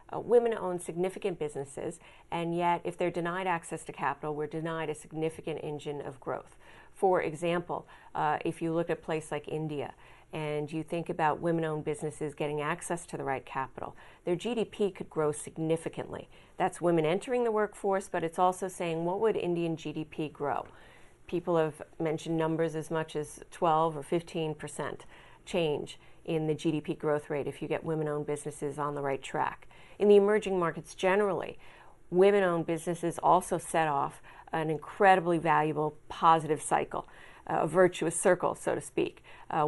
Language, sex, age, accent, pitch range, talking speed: English, female, 40-59, American, 155-180 Hz, 165 wpm